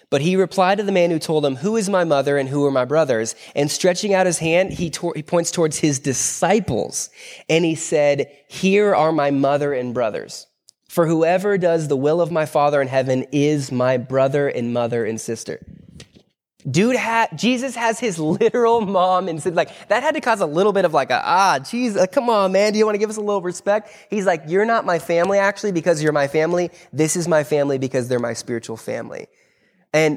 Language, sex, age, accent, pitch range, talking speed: English, male, 20-39, American, 140-190 Hz, 220 wpm